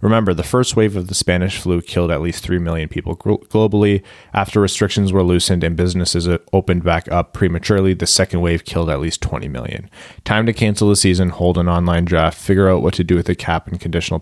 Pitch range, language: 85-100 Hz, English